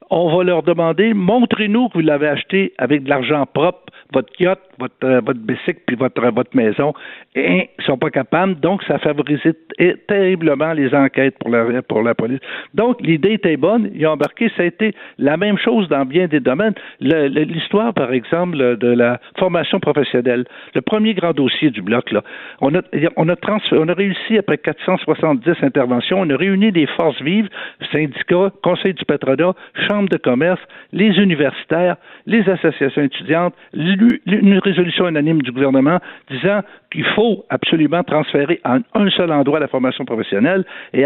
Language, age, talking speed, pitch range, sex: French, 60-79, 170 wpm, 135-190 Hz, male